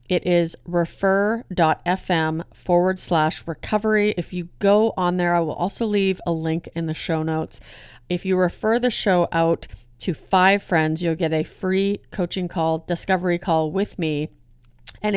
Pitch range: 160-190 Hz